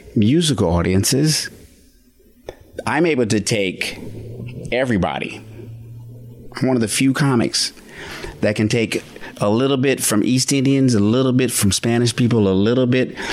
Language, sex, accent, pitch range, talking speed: English, male, American, 105-135 Hz, 140 wpm